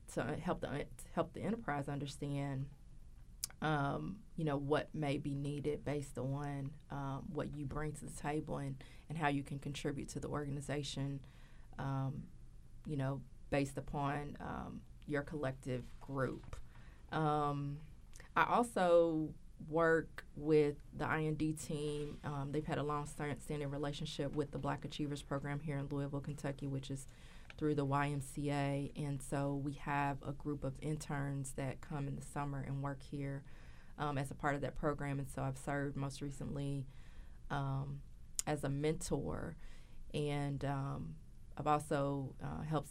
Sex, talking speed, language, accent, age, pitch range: female, 155 wpm, English, American, 20-39, 140-150 Hz